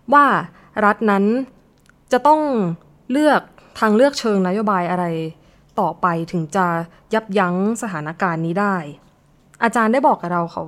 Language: Thai